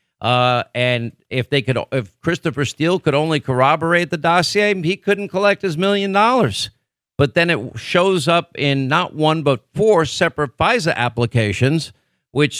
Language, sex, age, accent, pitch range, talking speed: English, male, 50-69, American, 125-160 Hz, 155 wpm